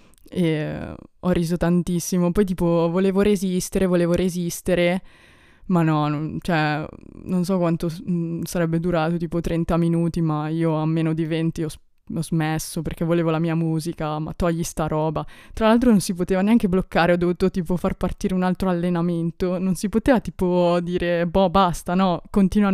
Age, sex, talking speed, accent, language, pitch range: 20-39, female, 165 wpm, native, Italian, 170-195 Hz